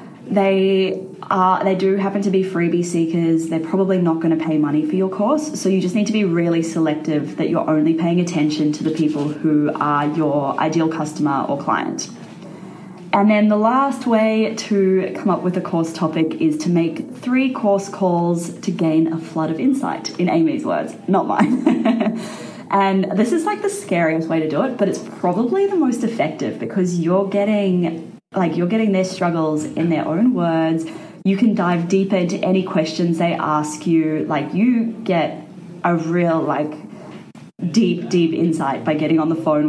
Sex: female